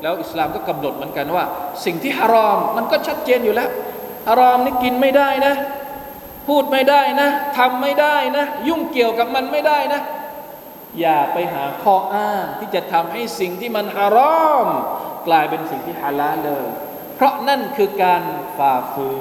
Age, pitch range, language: 20-39, 175-280 Hz, Thai